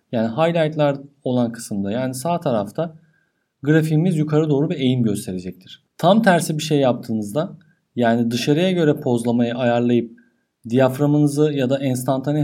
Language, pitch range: Turkish, 130-165 Hz